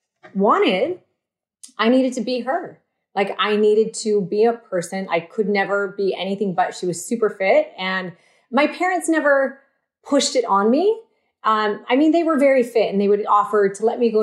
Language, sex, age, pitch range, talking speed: English, female, 30-49, 180-250 Hz, 195 wpm